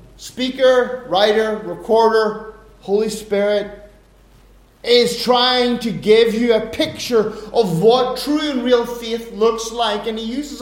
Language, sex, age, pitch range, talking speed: English, male, 30-49, 215-275 Hz, 130 wpm